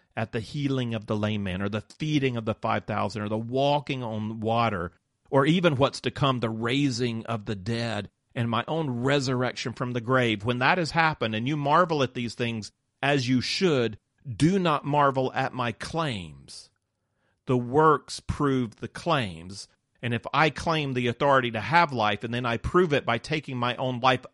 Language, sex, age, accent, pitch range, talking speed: English, male, 40-59, American, 110-140 Hz, 190 wpm